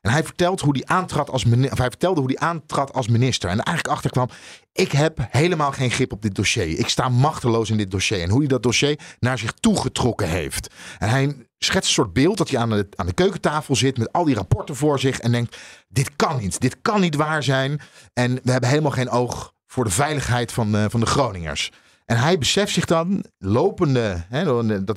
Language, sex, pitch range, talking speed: Dutch, male, 110-150 Hz, 225 wpm